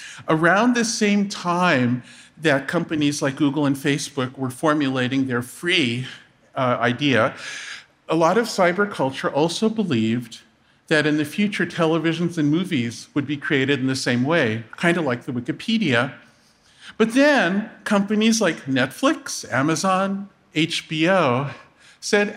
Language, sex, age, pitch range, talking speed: English, male, 50-69, 150-210 Hz, 135 wpm